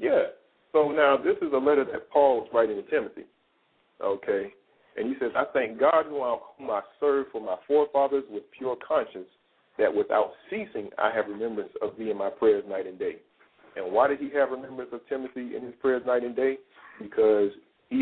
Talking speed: 195 wpm